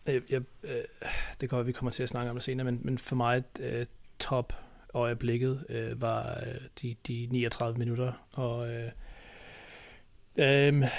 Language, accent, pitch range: Danish, native, 120-135 Hz